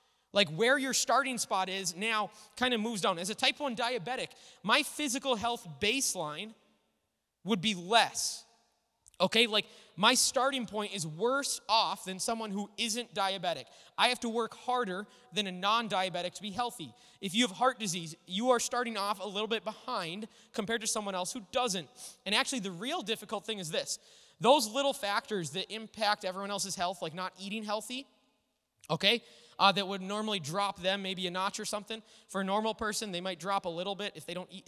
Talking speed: 195 wpm